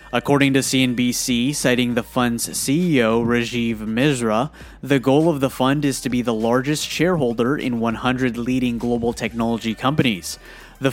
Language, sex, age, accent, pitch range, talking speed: English, male, 20-39, American, 120-135 Hz, 150 wpm